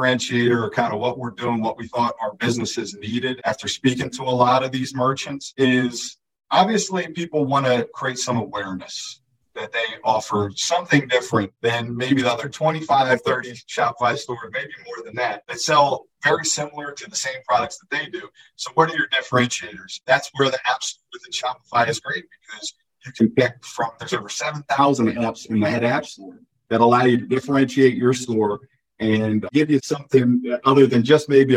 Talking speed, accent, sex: 190 wpm, American, male